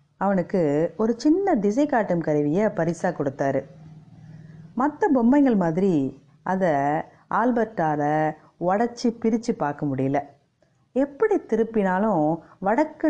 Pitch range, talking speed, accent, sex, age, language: 145-230 Hz, 90 wpm, native, female, 30-49, Tamil